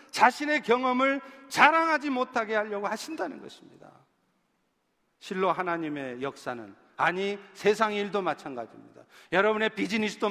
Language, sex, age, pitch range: Korean, male, 40-59, 165-235 Hz